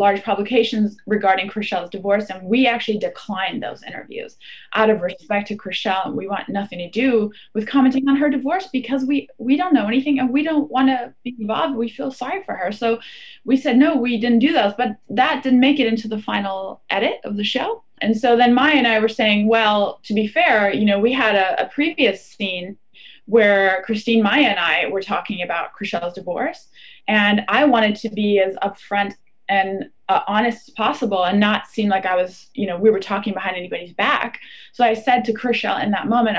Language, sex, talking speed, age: English, female, 210 wpm, 20-39